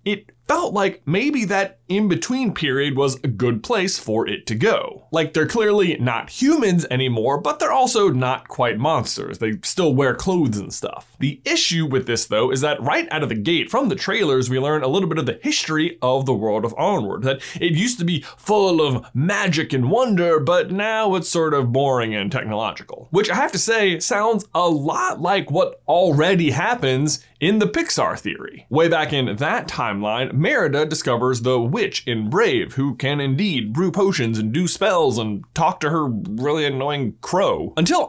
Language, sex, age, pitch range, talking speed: English, male, 20-39, 130-190 Hz, 190 wpm